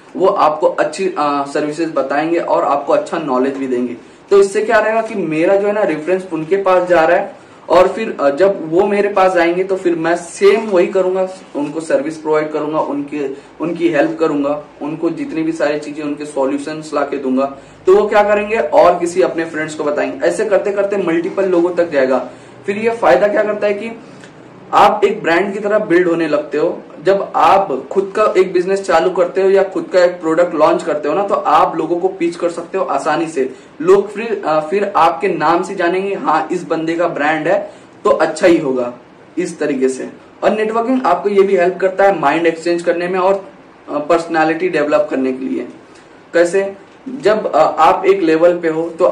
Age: 20-39